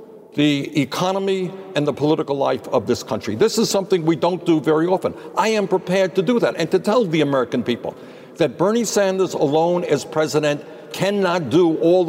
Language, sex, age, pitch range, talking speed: English, male, 60-79, 150-185 Hz, 190 wpm